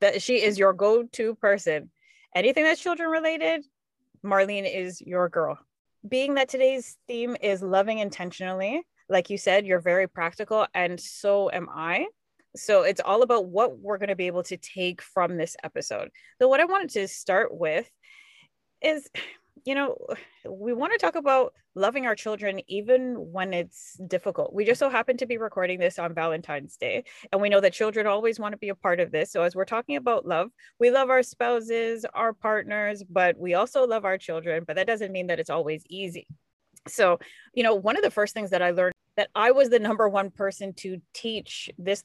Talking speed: 195 wpm